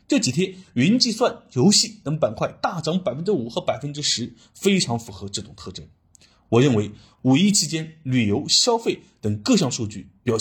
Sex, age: male, 30-49